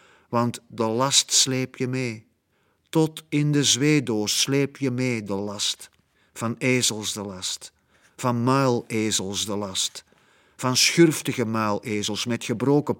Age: 50-69